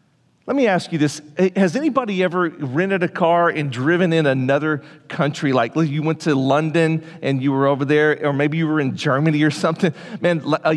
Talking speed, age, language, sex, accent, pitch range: 200 wpm, 40-59, English, male, American, 145-180 Hz